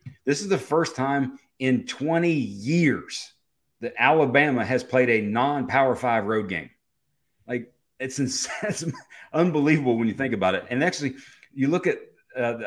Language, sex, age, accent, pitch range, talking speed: English, male, 40-59, American, 115-145 Hz, 155 wpm